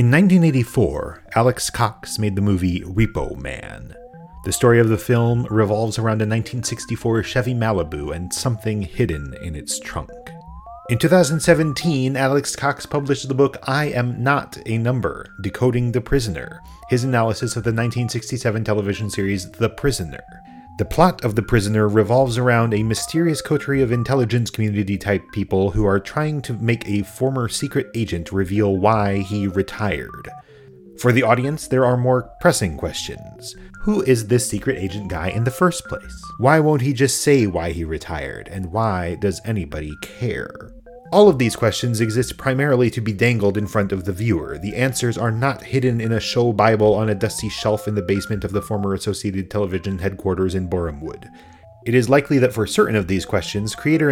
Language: English